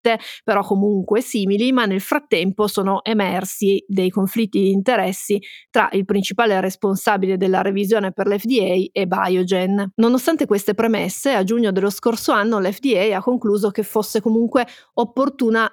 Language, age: Italian, 30-49